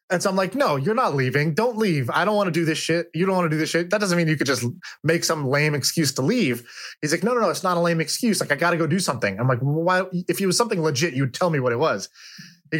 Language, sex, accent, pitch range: English, male, American, 135-180 Hz